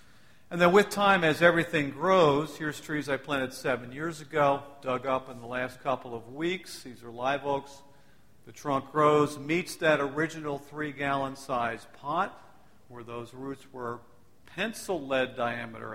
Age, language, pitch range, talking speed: 50-69, English, 125-160 Hz, 160 wpm